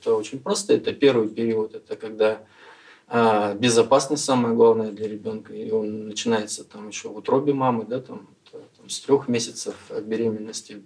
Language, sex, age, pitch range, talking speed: Russian, male, 20-39, 105-120 Hz, 140 wpm